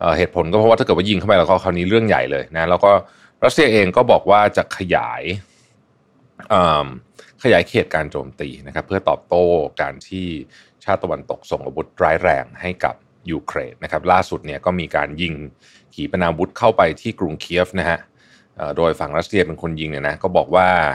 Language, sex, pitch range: Thai, male, 80-105 Hz